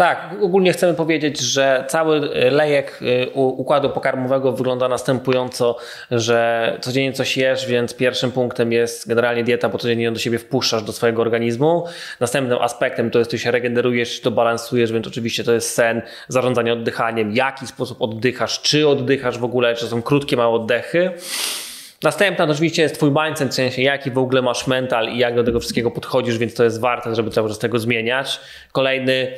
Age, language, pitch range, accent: 20-39, Polish, 120-140 Hz, native